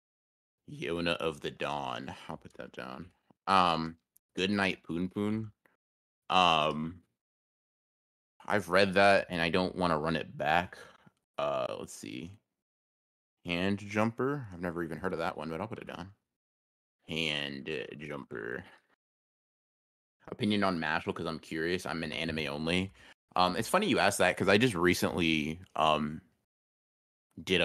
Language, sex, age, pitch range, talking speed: English, male, 30-49, 80-95 Hz, 145 wpm